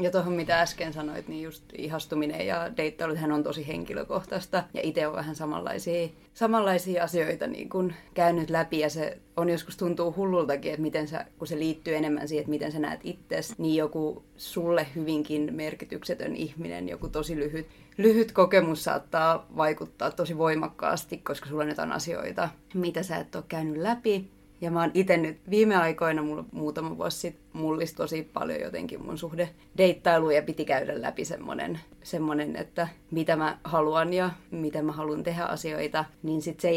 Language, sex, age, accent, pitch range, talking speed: Finnish, female, 30-49, native, 155-175 Hz, 170 wpm